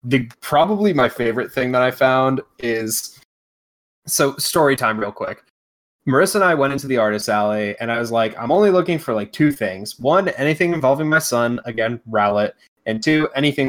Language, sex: English, male